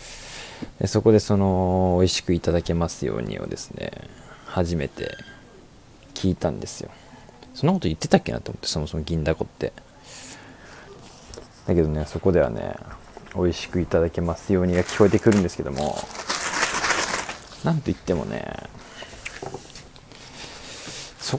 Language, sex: Japanese, male